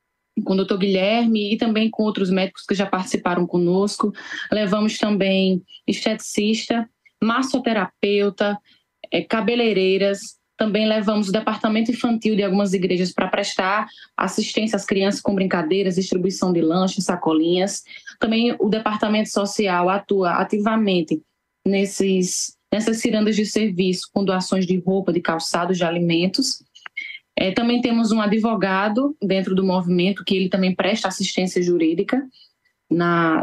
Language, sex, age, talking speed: Portuguese, female, 10-29, 125 wpm